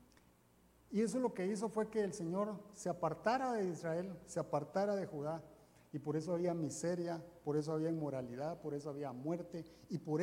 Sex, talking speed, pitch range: male, 190 wpm, 145-210 Hz